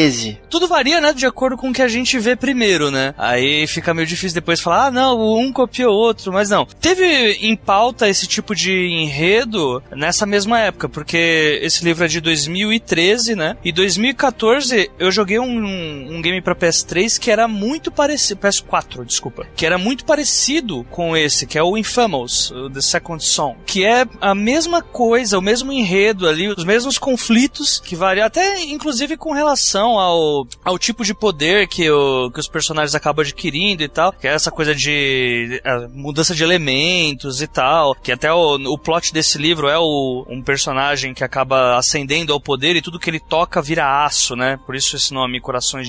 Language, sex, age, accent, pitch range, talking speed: Portuguese, male, 20-39, Brazilian, 150-230 Hz, 190 wpm